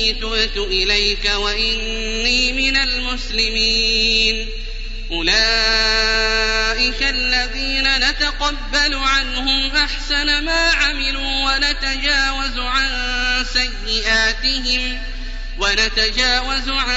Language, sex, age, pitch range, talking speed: Arabic, male, 30-49, 225-270 Hz, 55 wpm